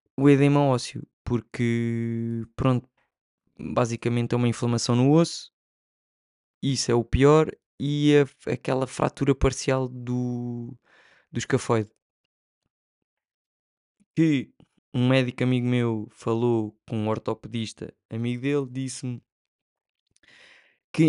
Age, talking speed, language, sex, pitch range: 20-39, 100 wpm, Portuguese, male, 115-135 Hz